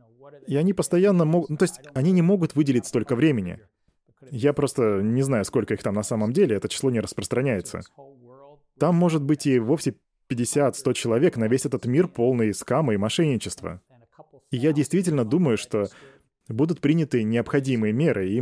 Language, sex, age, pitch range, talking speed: Russian, male, 20-39, 115-145 Hz, 170 wpm